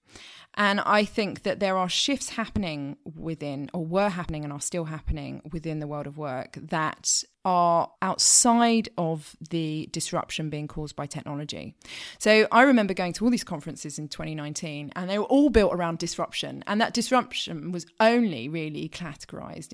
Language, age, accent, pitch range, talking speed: English, 20-39, British, 160-205 Hz, 165 wpm